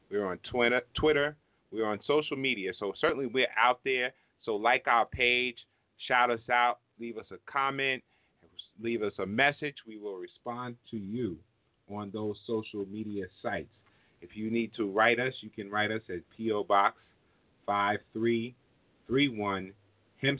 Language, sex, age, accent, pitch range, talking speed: English, male, 30-49, American, 100-120 Hz, 155 wpm